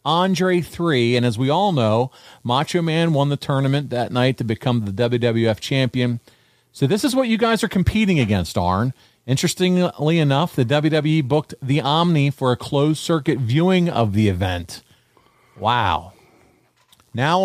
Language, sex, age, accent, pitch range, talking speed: English, male, 40-59, American, 115-155 Hz, 160 wpm